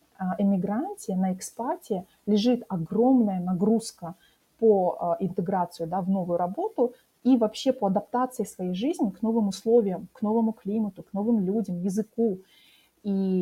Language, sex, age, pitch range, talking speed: Russian, female, 20-39, 180-225 Hz, 125 wpm